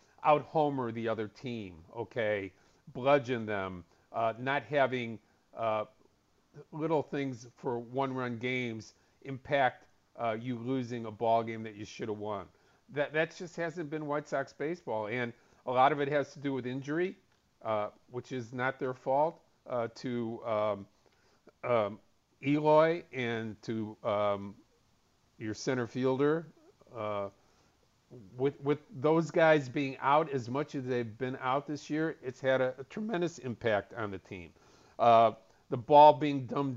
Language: English